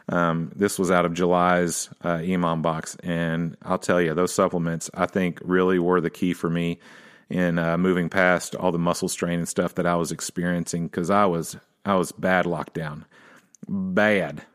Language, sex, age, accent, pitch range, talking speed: English, male, 30-49, American, 90-110 Hz, 190 wpm